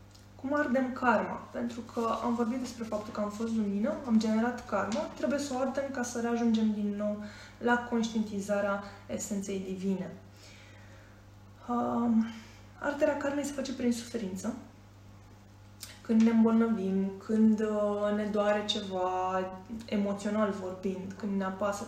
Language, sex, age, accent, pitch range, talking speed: Romanian, female, 20-39, native, 190-230 Hz, 135 wpm